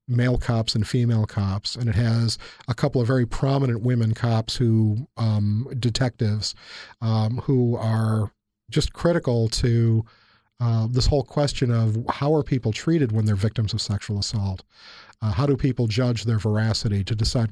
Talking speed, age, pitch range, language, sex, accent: 165 wpm, 40-59, 110-125 Hz, English, male, American